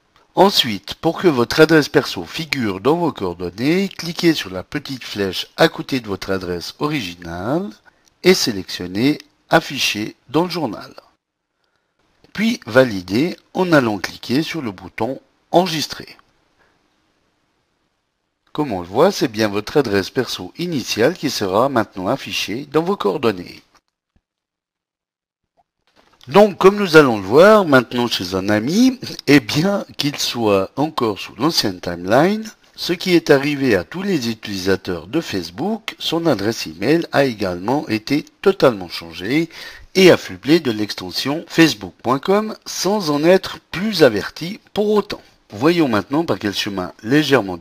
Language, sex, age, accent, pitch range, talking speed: French, male, 60-79, French, 105-170 Hz, 135 wpm